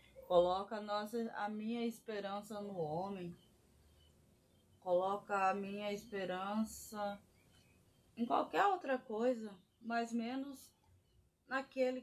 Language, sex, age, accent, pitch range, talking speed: Portuguese, female, 20-39, Brazilian, 175-225 Hz, 90 wpm